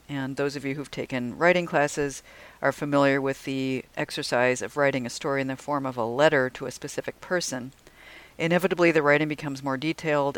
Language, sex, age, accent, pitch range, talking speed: English, female, 50-69, American, 125-145 Hz, 190 wpm